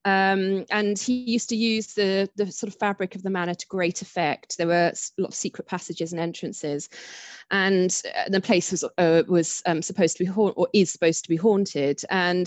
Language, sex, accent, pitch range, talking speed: English, female, British, 170-205 Hz, 210 wpm